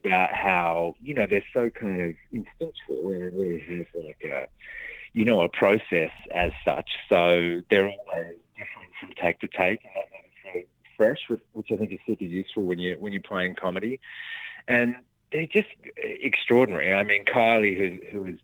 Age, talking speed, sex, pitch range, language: 30-49, 165 wpm, male, 85-120 Hz, English